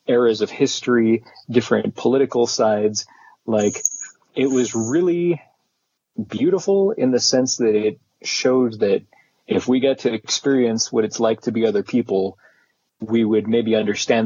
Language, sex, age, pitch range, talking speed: English, male, 30-49, 105-130 Hz, 145 wpm